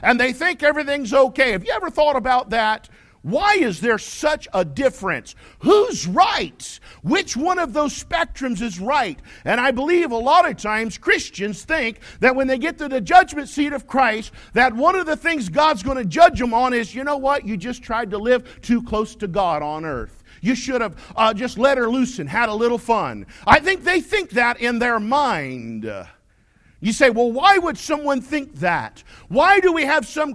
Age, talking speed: 50-69, 205 wpm